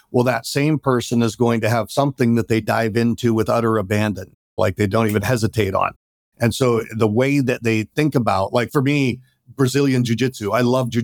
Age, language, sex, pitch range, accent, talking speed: 50-69, English, male, 110-130 Hz, American, 210 wpm